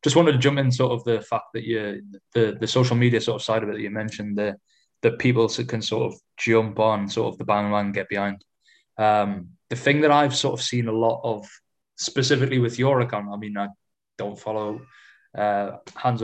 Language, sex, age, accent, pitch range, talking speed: English, male, 20-39, British, 110-125 Hz, 220 wpm